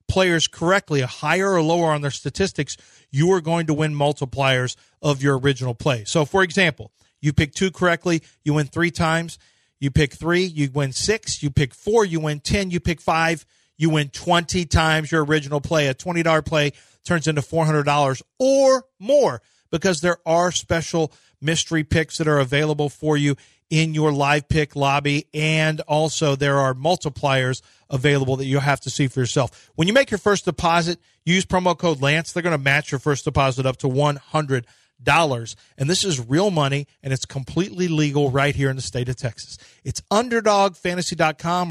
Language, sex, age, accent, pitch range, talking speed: English, male, 40-59, American, 140-170 Hz, 185 wpm